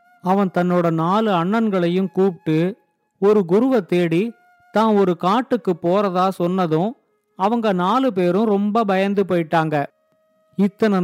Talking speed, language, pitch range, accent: 110 wpm, Tamil, 175-220 Hz, native